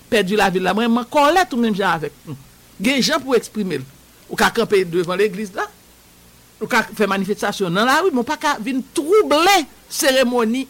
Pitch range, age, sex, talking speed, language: 205-255 Hz, 60-79, male, 175 wpm, English